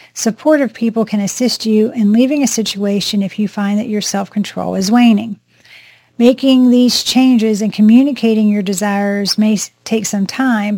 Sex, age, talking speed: female, 40-59, 155 wpm